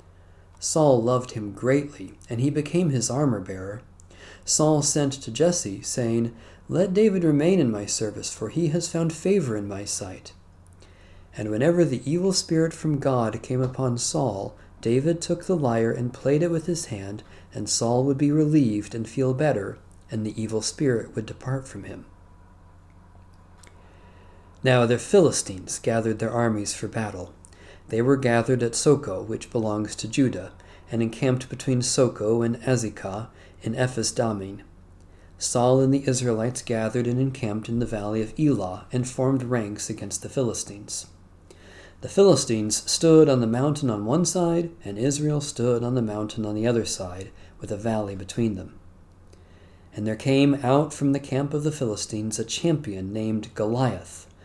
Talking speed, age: 160 wpm, 40-59